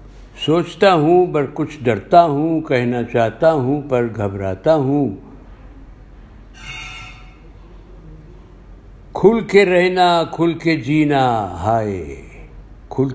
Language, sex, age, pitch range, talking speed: Urdu, male, 60-79, 110-150 Hz, 90 wpm